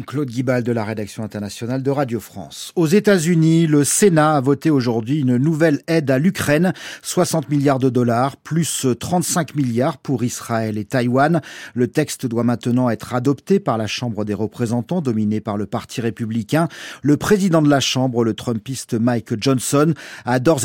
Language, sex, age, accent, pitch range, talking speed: French, male, 40-59, French, 120-155 Hz, 175 wpm